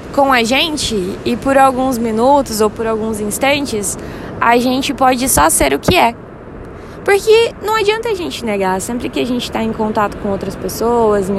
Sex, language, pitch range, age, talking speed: female, Portuguese, 225-305 Hz, 20-39, 190 wpm